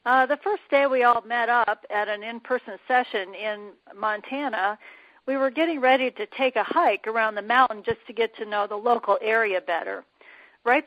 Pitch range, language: 215-285 Hz, Turkish